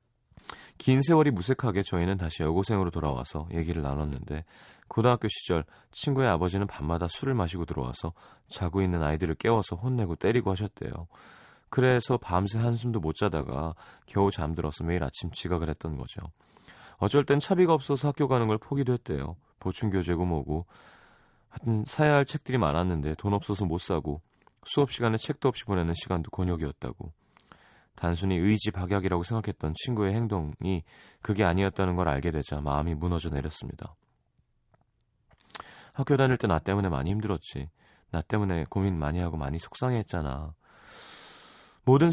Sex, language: male, Korean